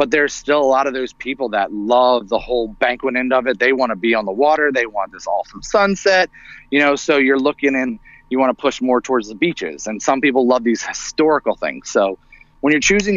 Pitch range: 115-140 Hz